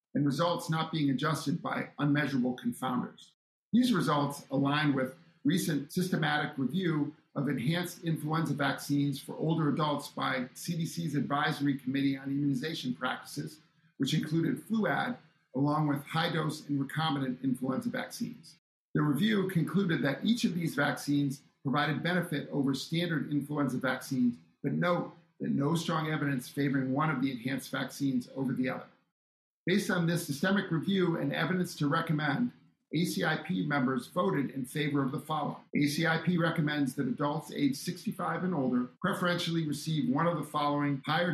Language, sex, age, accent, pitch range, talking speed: English, male, 50-69, American, 140-165 Hz, 145 wpm